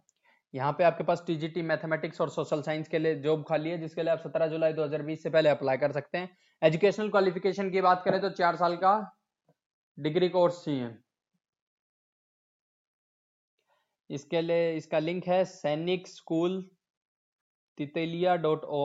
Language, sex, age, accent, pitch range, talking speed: Hindi, male, 20-39, native, 150-175 Hz, 145 wpm